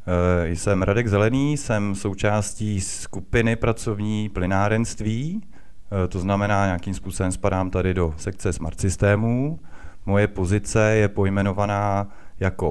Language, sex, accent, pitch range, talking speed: Czech, male, native, 85-100 Hz, 110 wpm